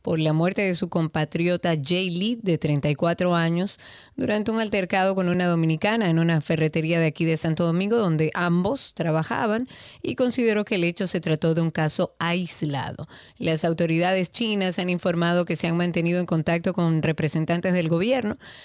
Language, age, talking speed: Spanish, 30-49, 175 wpm